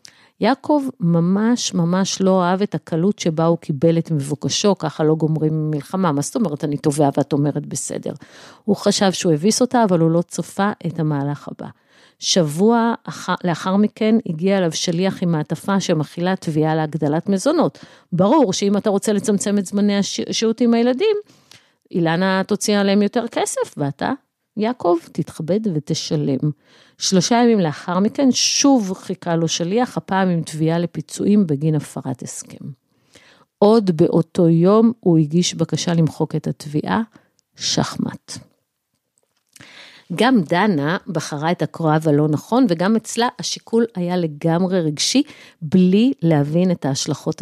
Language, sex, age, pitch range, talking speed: Hebrew, female, 50-69, 160-210 Hz, 140 wpm